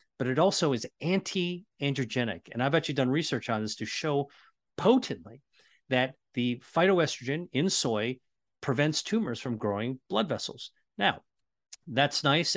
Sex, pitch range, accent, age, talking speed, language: male, 115-155 Hz, American, 40-59, 140 wpm, English